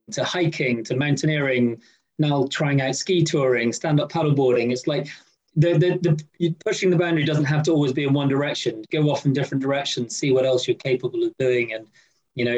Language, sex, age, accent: English, male, 30-49, British